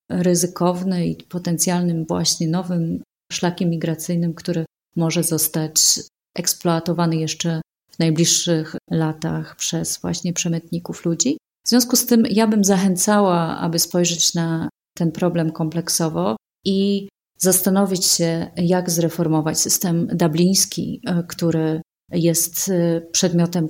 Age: 30-49